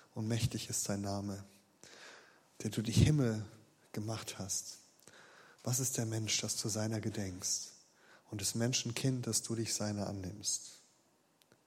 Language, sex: German, male